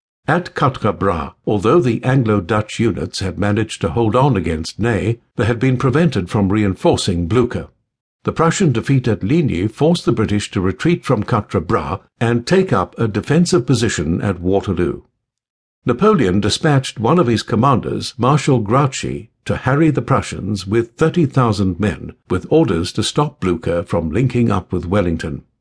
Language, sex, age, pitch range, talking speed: English, male, 60-79, 100-130 Hz, 150 wpm